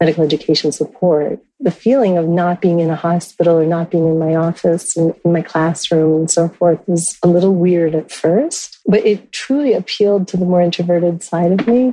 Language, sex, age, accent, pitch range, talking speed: English, female, 40-59, American, 165-185 Hz, 200 wpm